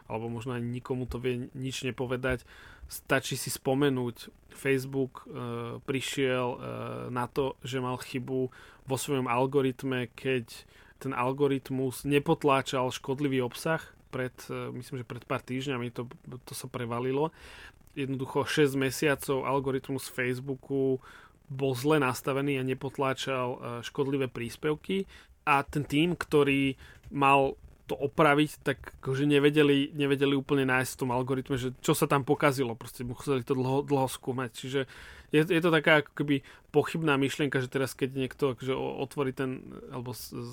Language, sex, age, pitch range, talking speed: Slovak, male, 30-49, 125-140 Hz, 145 wpm